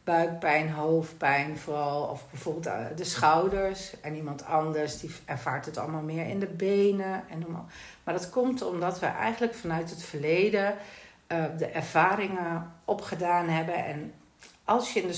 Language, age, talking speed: Dutch, 60-79, 155 wpm